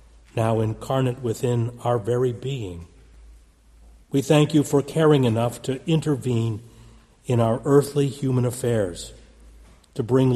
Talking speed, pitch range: 120 wpm, 105-135 Hz